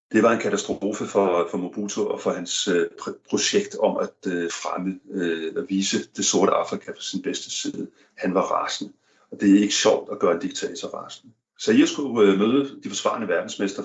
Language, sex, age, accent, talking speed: Danish, male, 40-59, native, 210 wpm